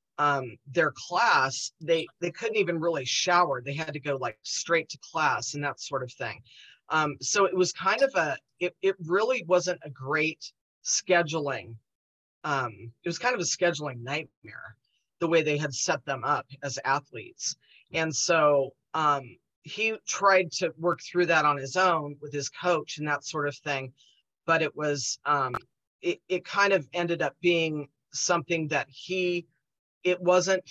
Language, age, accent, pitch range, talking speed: English, 30-49, American, 135-170 Hz, 175 wpm